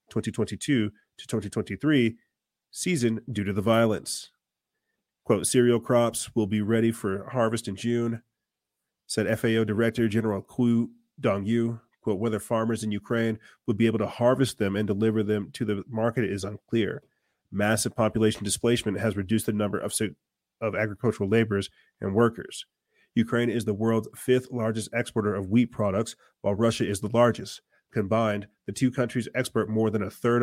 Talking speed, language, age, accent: 160 wpm, English, 30-49, American